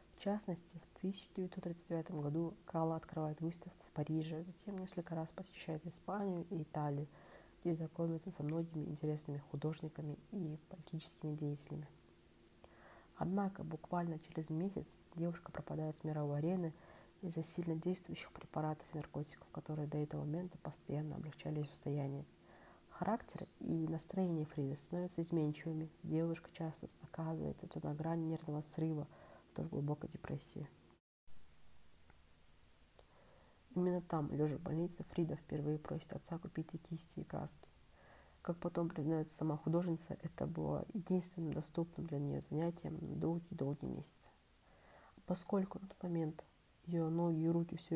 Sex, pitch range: female, 150-170 Hz